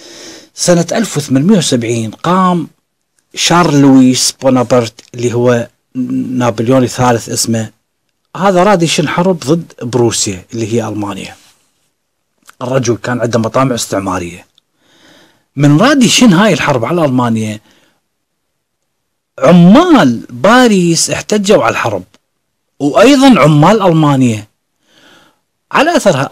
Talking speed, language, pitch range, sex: 95 wpm, Arabic, 115-170 Hz, male